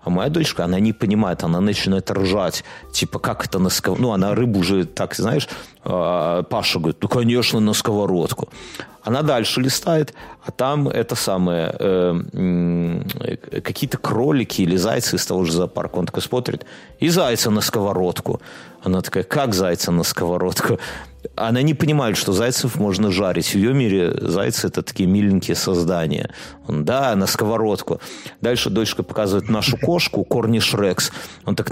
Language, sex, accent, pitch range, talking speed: Russian, male, native, 95-125 Hz, 155 wpm